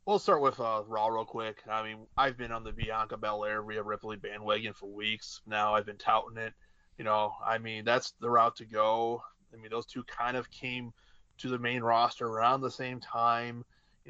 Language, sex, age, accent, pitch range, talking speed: English, male, 20-39, American, 110-120 Hz, 215 wpm